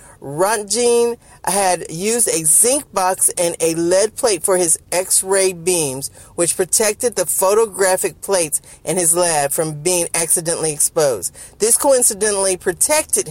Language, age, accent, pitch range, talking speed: English, 40-59, American, 165-225 Hz, 130 wpm